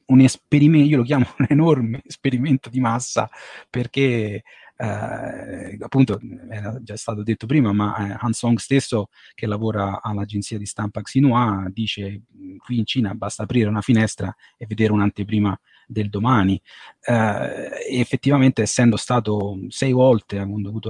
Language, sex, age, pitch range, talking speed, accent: Italian, male, 30-49, 110-125 Hz, 140 wpm, native